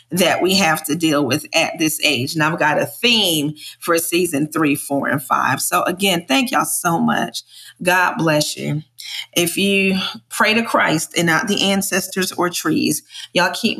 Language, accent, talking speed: English, American, 185 wpm